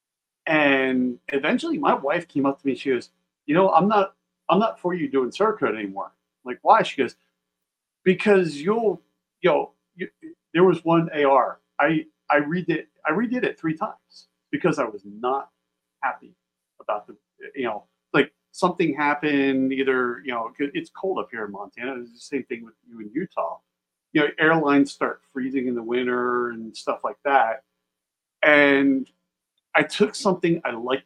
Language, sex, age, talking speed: English, male, 50-69, 170 wpm